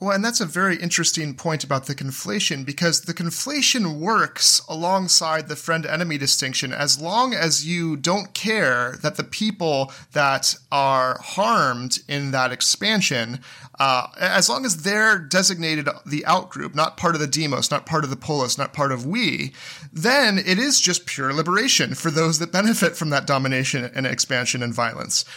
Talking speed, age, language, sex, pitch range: 175 wpm, 30-49, English, male, 130-170 Hz